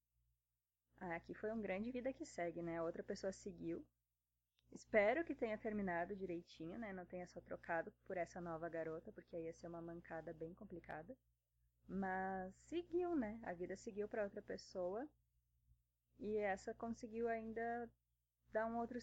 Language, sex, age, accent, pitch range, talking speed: Portuguese, female, 20-39, Brazilian, 165-205 Hz, 160 wpm